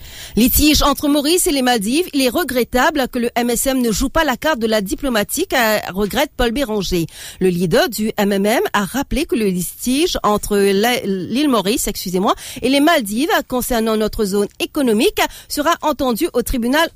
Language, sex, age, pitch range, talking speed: English, female, 50-69, 200-280 Hz, 165 wpm